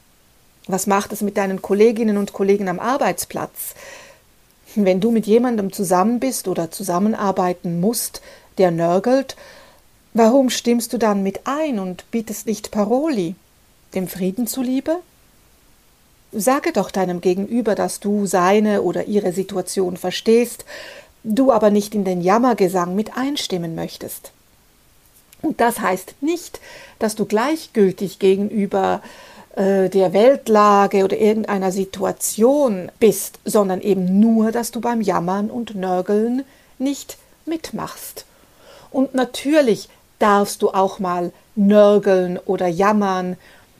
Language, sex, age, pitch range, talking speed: German, female, 60-79, 190-235 Hz, 120 wpm